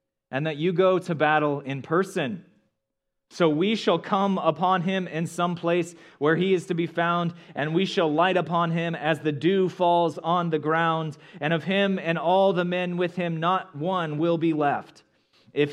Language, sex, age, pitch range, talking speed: English, male, 30-49, 130-170 Hz, 195 wpm